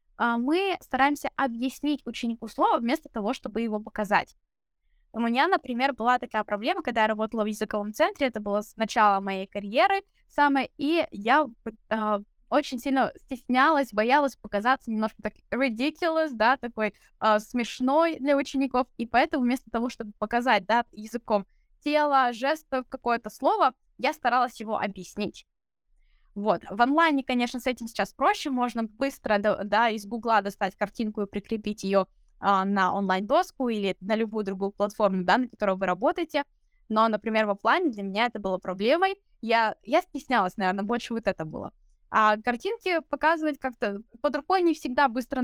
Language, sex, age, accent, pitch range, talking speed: Russian, female, 10-29, native, 215-275 Hz, 155 wpm